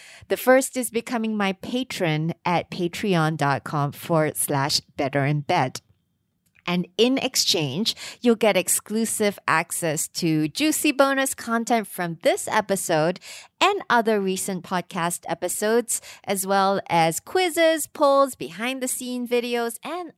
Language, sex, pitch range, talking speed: English, female, 165-250 Hz, 125 wpm